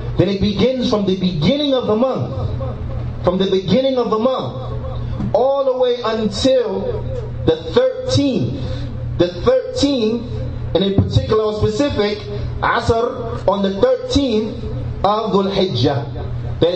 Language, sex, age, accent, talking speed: English, male, 30-49, American, 115 wpm